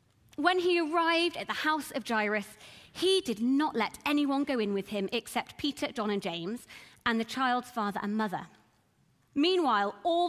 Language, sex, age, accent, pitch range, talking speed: English, female, 30-49, British, 200-285 Hz, 175 wpm